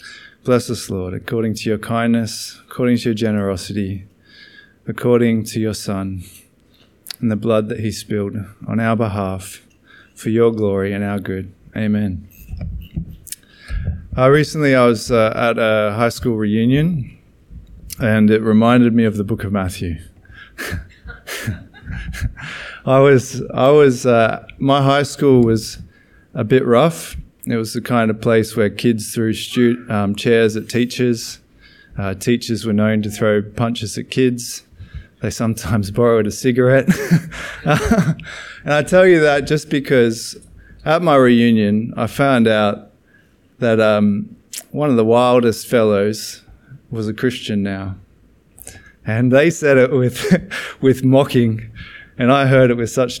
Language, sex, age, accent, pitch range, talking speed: English, male, 20-39, Australian, 105-125 Hz, 145 wpm